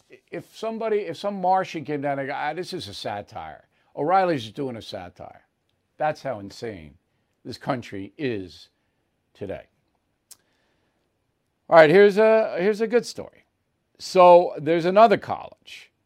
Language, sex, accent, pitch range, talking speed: English, male, American, 140-215 Hz, 140 wpm